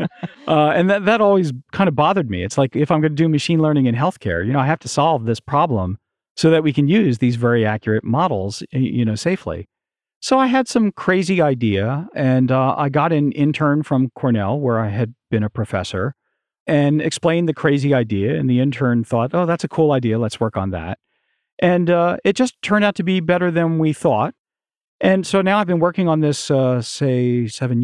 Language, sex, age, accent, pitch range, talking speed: English, male, 40-59, American, 125-175 Hz, 220 wpm